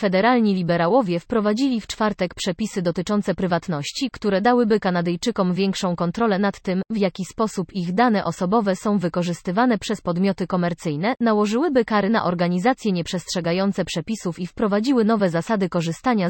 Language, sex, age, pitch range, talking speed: Polish, female, 20-39, 180-225 Hz, 135 wpm